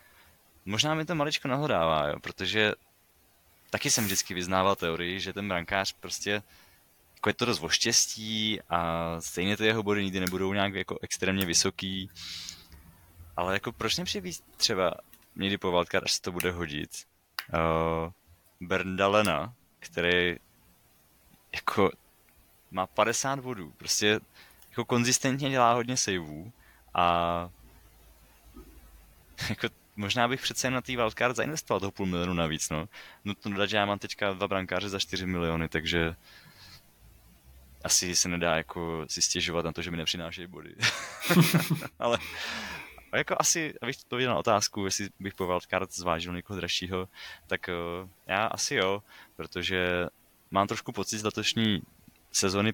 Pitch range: 85-105 Hz